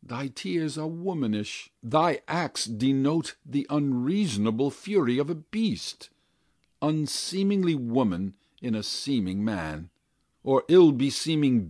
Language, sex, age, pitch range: Korean, male, 60-79, 115-175 Hz